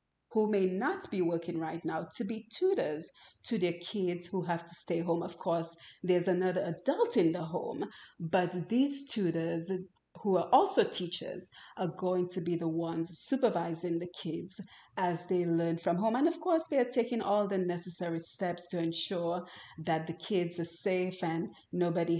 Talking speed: 180 wpm